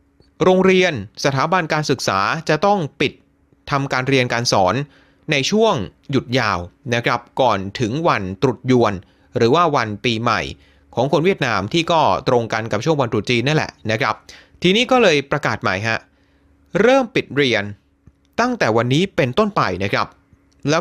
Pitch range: 115-165 Hz